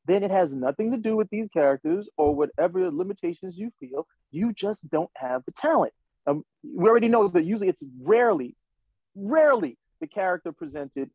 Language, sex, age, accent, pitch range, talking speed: English, male, 30-49, American, 160-245 Hz, 170 wpm